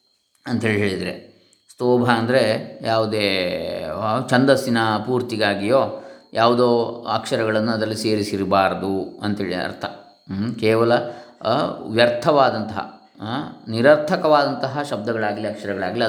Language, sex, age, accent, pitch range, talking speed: Kannada, male, 20-39, native, 110-155 Hz, 65 wpm